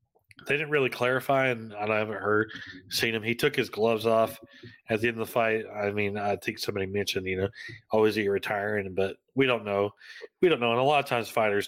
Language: English